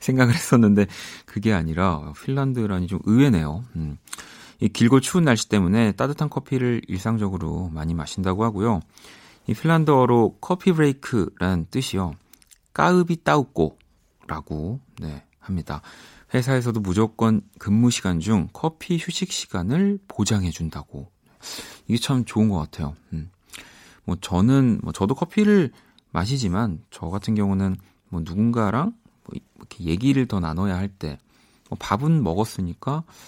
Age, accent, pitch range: 40-59, native, 90-125 Hz